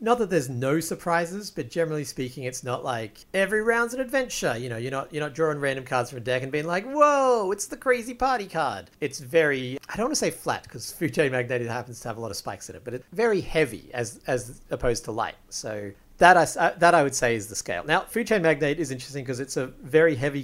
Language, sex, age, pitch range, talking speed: English, male, 40-59, 115-160 Hz, 255 wpm